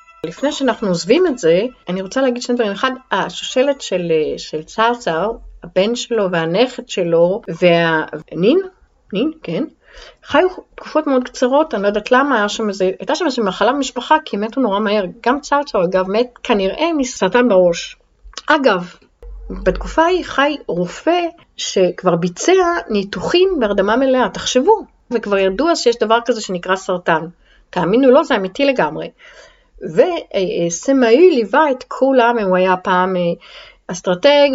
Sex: female